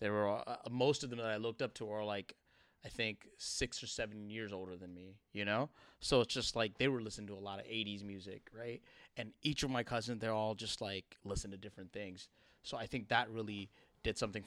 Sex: male